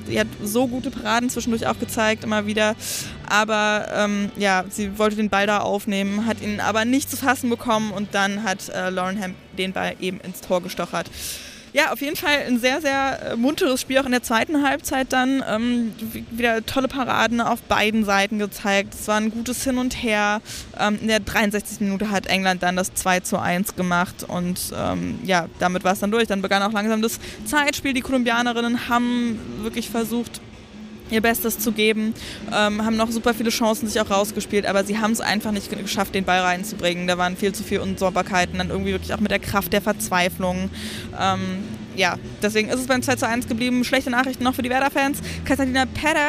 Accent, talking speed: German, 200 wpm